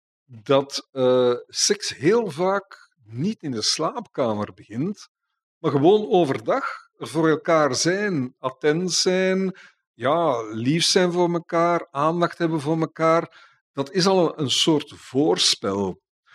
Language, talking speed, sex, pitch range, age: Dutch, 120 wpm, male, 125-170 Hz, 50-69